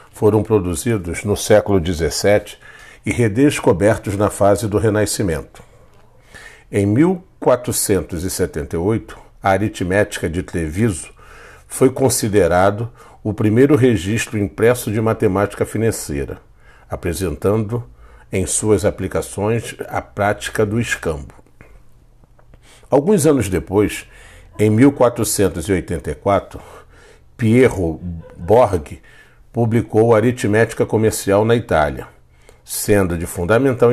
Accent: Brazilian